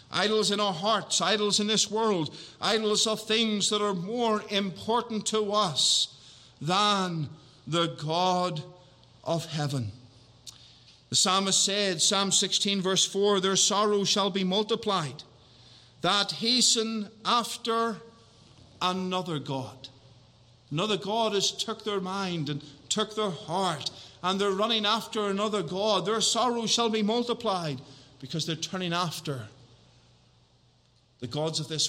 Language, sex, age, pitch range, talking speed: English, male, 50-69, 145-205 Hz, 130 wpm